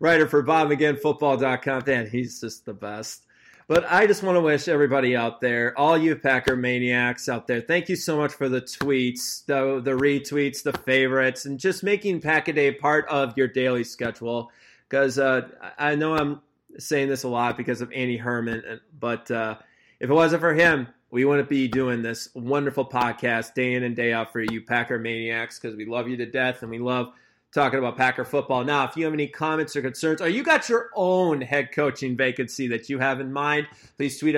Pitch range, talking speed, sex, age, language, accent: 125-165 Hz, 205 wpm, male, 20-39, English, American